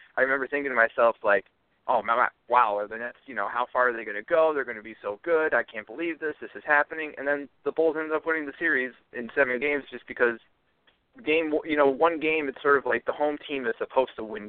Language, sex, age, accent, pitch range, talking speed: English, male, 20-39, American, 110-140 Hz, 270 wpm